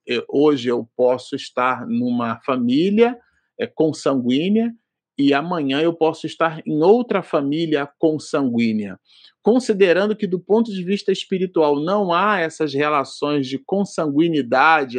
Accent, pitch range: Brazilian, 135-190 Hz